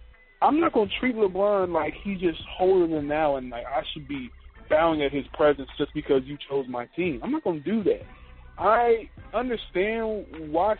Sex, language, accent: male, English, American